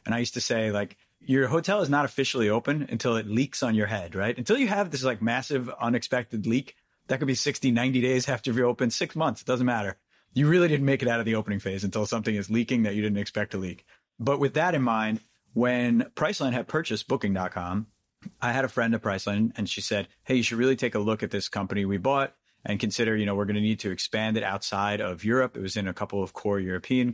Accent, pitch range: American, 105-125 Hz